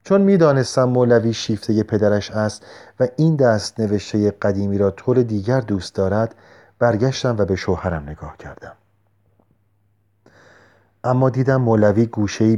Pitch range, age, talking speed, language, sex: 100-135 Hz, 40-59, 130 wpm, Persian, male